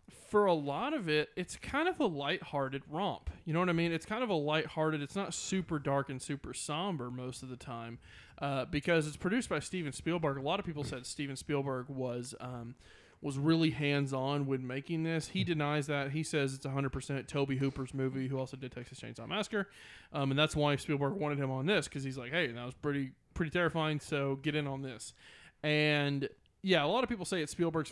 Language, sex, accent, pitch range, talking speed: English, male, American, 135-170 Hz, 220 wpm